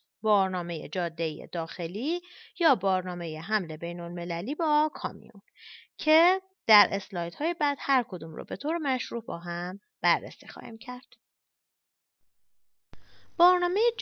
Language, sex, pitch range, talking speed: Persian, female, 180-255 Hz, 115 wpm